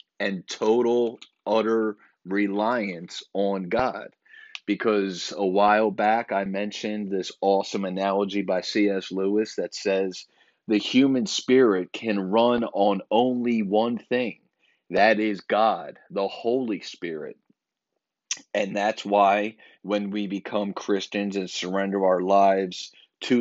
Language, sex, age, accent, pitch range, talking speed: English, male, 30-49, American, 95-110 Hz, 120 wpm